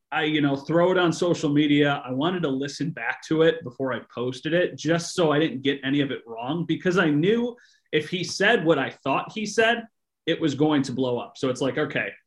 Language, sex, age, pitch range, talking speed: English, male, 30-49, 130-160 Hz, 240 wpm